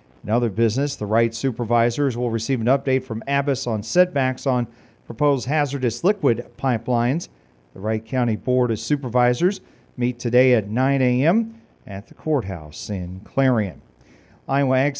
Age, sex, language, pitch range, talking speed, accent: 40-59, male, English, 115-140 Hz, 150 wpm, American